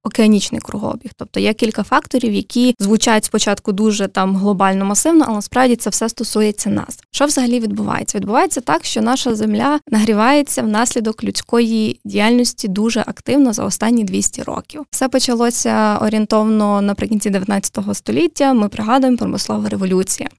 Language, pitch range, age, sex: Ukrainian, 205-255 Hz, 20-39, female